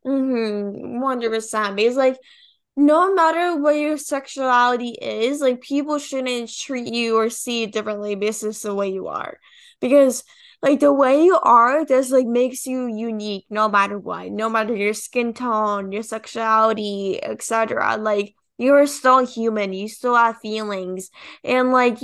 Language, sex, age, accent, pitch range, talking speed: English, female, 10-29, American, 220-265 Hz, 160 wpm